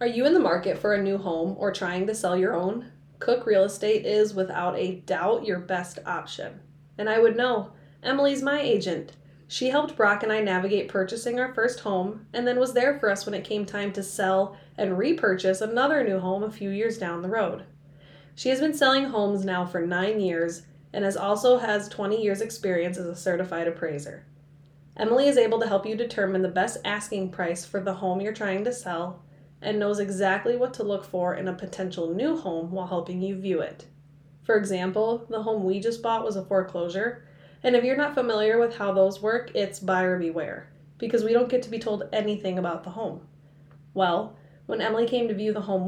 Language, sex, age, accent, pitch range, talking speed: English, female, 20-39, American, 180-225 Hz, 210 wpm